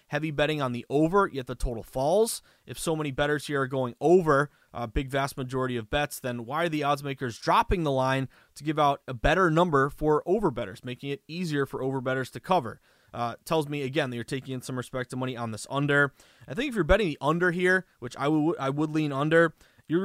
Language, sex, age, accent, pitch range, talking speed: English, male, 20-39, American, 130-160 Hz, 235 wpm